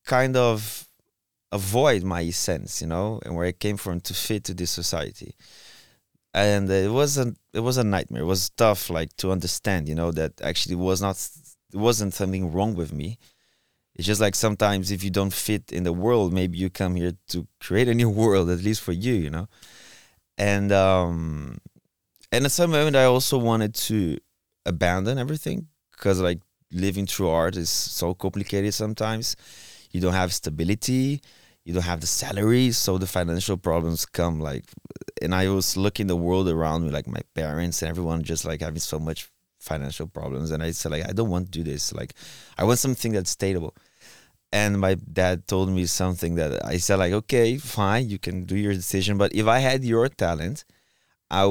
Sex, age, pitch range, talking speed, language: male, 20-39, 85-110 Hz, 190 wpm, English